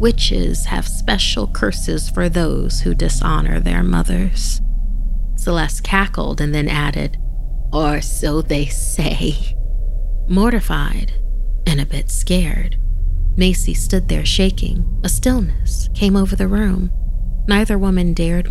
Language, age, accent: English, 30-49, American